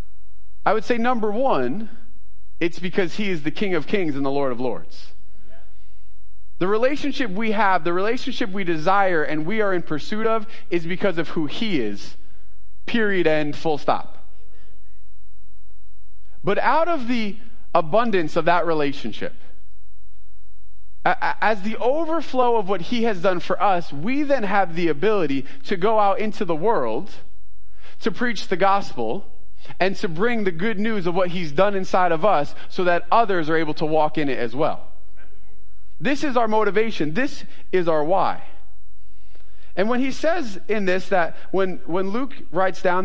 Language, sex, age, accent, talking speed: English, male, 30-49, American, 165 wpm